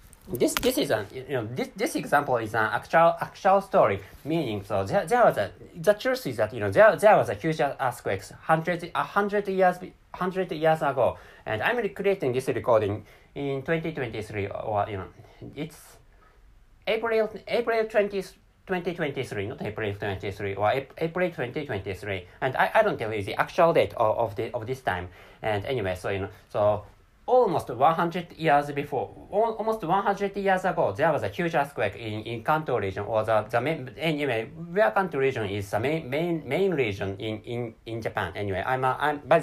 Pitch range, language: 100-170 Hz, English